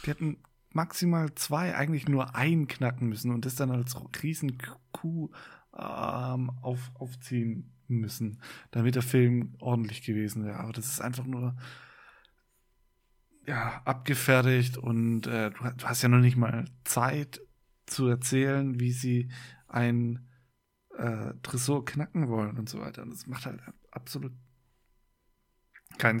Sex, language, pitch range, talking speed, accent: male, German, 120-140 Hz, 135 wpm, German